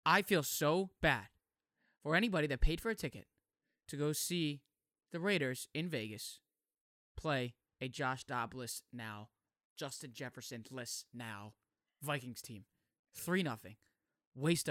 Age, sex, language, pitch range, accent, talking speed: 20-39, male, English, 125-175 Hz, American, 130 wpm